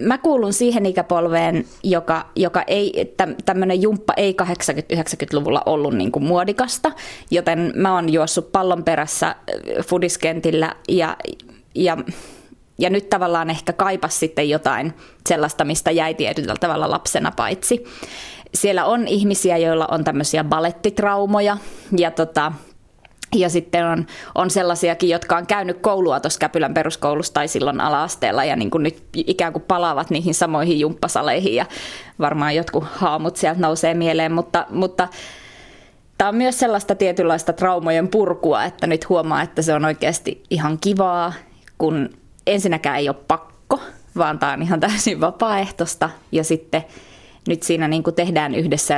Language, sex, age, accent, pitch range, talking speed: Finnish, female, 20-39, native, 160-190 Hz, 140 wpm